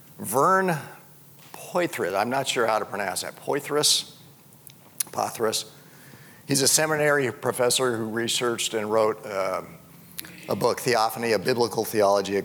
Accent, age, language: American, 50-69, English